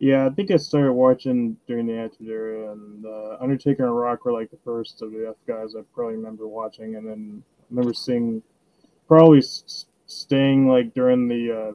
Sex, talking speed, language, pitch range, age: male, 195 wpm, English, 115-135 Hz, 20-39